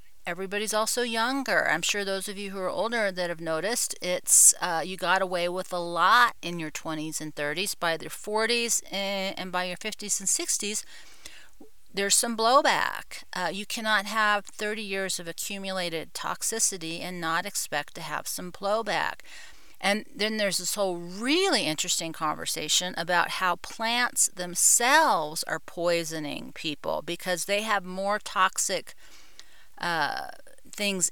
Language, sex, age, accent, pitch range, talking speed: English, female, 40-59, American, 165-210 Hz, 150 wpm